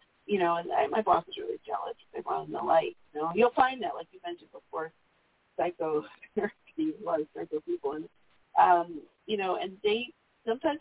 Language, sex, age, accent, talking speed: English, female, 40-59, American, 195 wpm